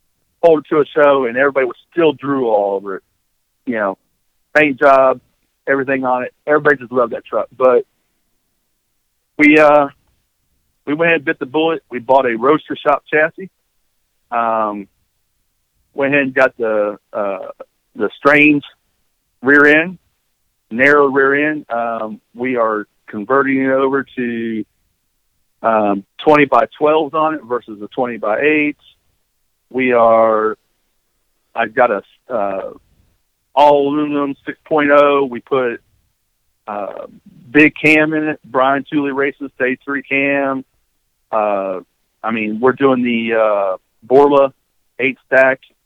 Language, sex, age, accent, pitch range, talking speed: English, male, 50-69, American, 115-145 Hz, 135 wpm